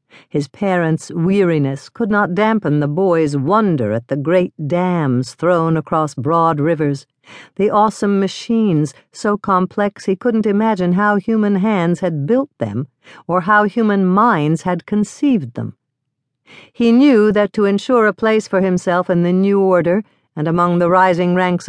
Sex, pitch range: female, 145-195 Hz